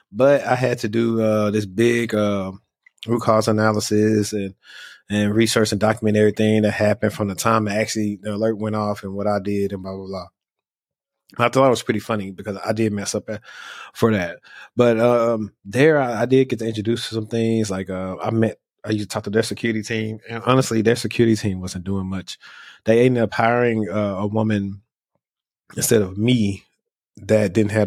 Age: 20-39